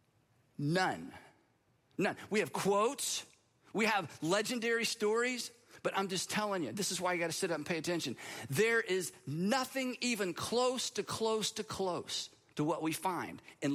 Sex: male